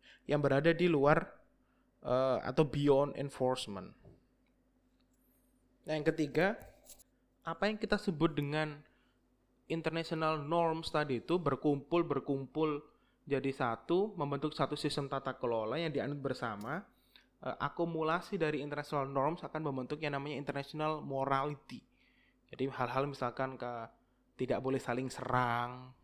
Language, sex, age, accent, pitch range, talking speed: Indonesian, male, 20-39, native, 130-155 Hz, 115 wpm